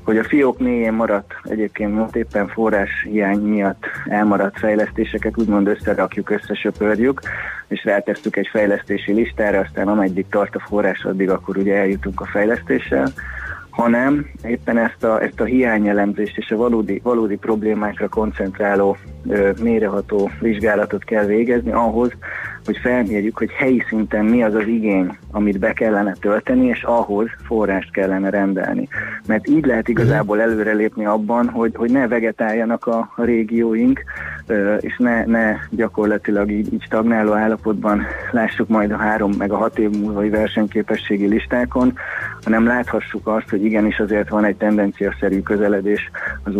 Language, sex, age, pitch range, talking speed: Hungarian, male, 20-39, 100-115 Hz, 140 wpm